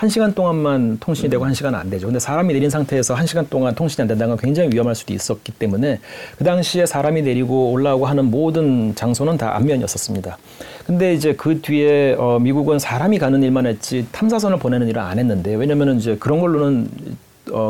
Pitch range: 120-150 Hz